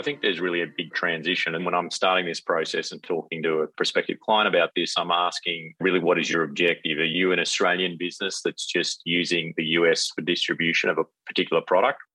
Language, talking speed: English, 215 wpm